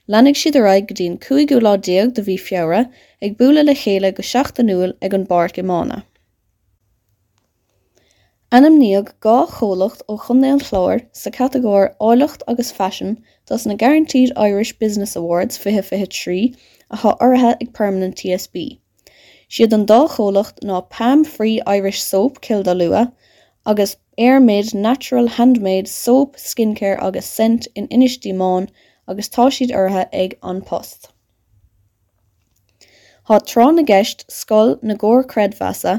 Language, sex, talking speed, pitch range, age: English, female, 125 wpm, 190-245 Hz, 20-39